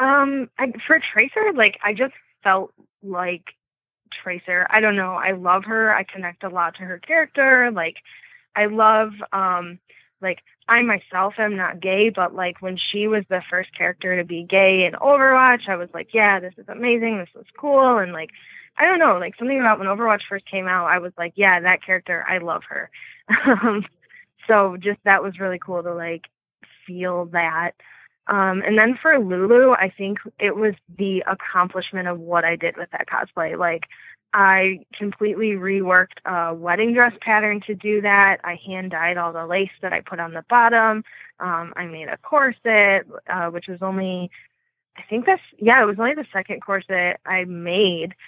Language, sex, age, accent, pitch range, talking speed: English, female, 20-39, American, 180-215 Hz, 190 wpm